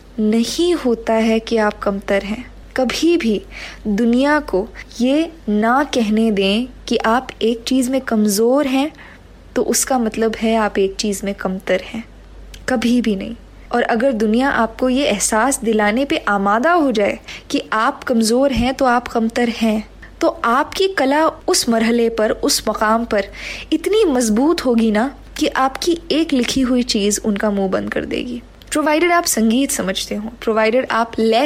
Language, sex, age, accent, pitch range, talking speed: Hindi, female, 20-39, native, 220-280 Hz, 165 wpm